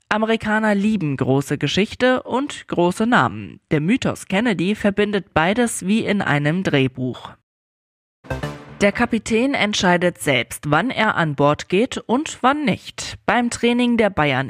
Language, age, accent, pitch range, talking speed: German, 20-39, German, 150-215 Hz, 130 wpm